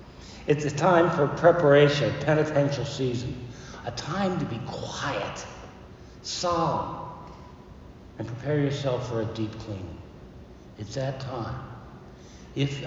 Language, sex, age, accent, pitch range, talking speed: English, male, 60-79, American, 110-145 Hz, 110 wpm